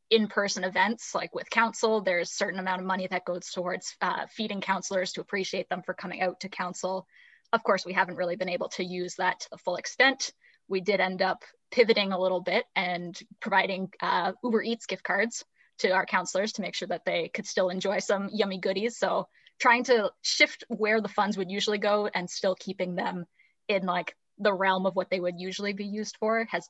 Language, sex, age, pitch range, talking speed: English, female, 10-29, 185-210 Hz, 215 wpm